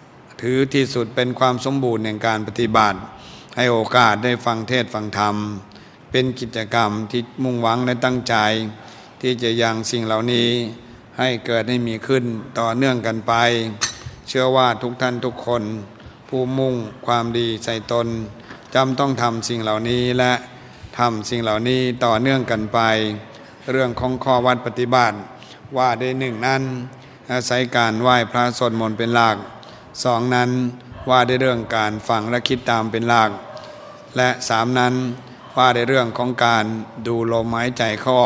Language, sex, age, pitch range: Thai, male, 60-79, 115-125 Hz